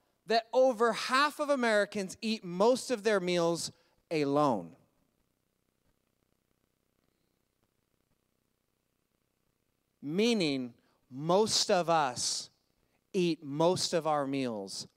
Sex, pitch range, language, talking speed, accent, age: male, 160-215 Hz, English, 80 wpm, American, 30-49